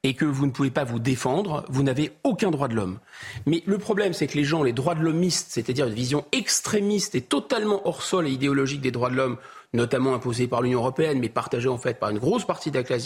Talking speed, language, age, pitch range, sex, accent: 250 wpm, French, 40-59, 125-175 Hz, male, French